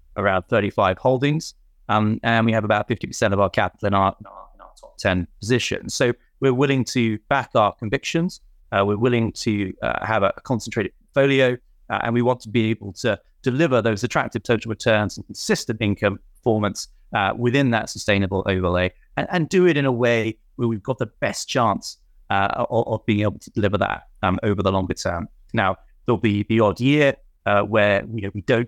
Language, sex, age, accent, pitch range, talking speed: English, male, 30-49, British, 100-120 Hz, 195 wpm